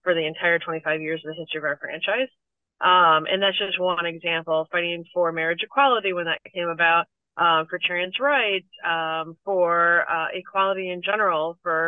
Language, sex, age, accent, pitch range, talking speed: English, female, 30-49, American, 170-190 Hz, 180 wpm